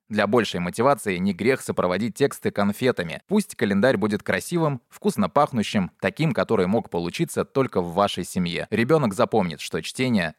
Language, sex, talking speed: Russian, male, 150 wpm